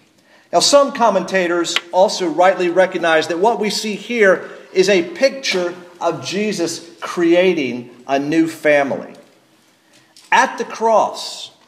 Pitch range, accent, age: 150-200 Hz, American, 50-69